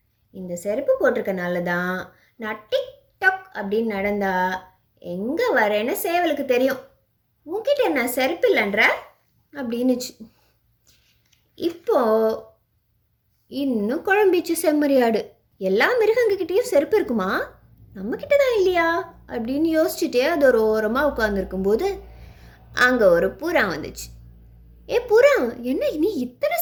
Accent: native